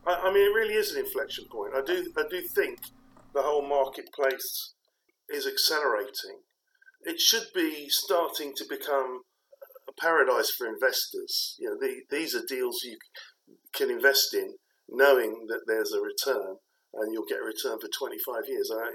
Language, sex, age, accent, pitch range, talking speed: English, male, 50-69, British, 380-485 Hz, 165 wpm